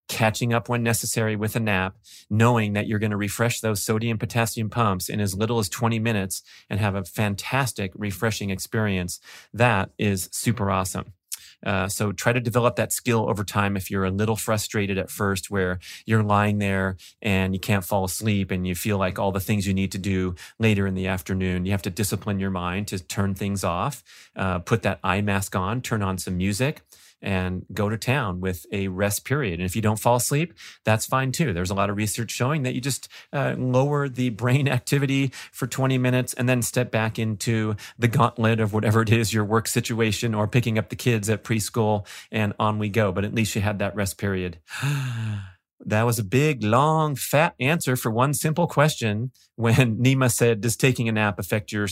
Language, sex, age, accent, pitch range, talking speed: English, male, 30-49, American, 100-120 Hz, 205 wpm